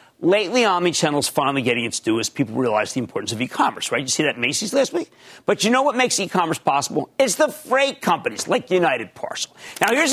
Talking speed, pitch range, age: 215 wpm, 140-220 Hz, 50-69